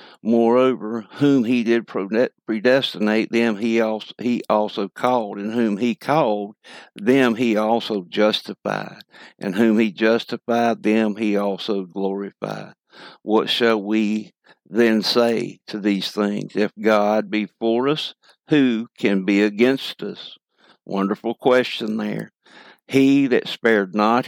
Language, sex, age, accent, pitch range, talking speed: English, male, 60-79, American, 105-125 Hz, 125 wpm